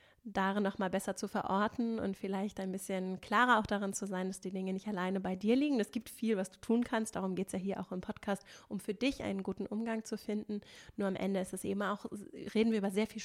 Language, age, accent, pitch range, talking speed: German, 30-49, German, 195-220 Hz, 265 wpm